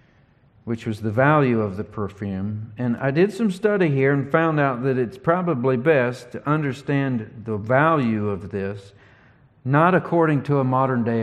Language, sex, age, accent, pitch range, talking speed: English, male, 50-69, American, 110-140 Hz, 165 wpm